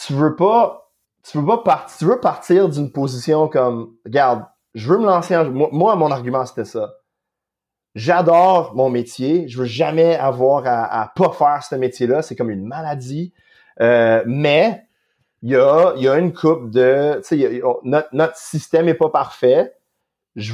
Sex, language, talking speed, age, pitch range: male, French, 185 wpm, 30-49, 130-180 Hz